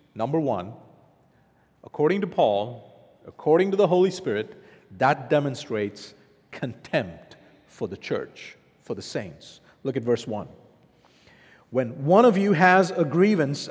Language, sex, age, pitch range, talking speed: English, male, 50-69, 165-235 Hz, 130 wpm